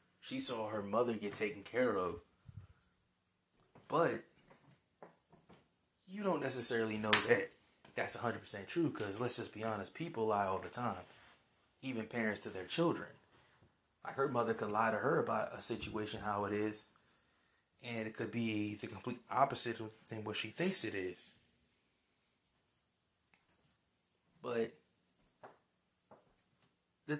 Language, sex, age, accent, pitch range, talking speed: English, male, 20-39, American, 105-130 Hz, 130 wpm